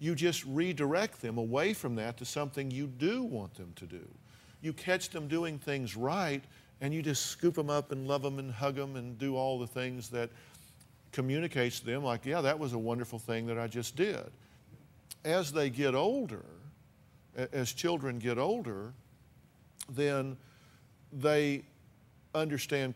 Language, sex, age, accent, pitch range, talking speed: English, male, 50-69, American, 115-140 Hz, 165 wpm